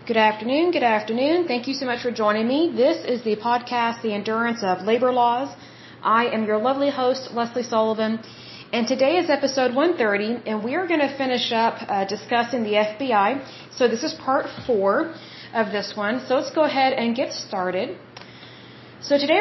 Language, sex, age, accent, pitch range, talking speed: Hindi, female, 30-49, American, 220-265 Hz, 185 wpm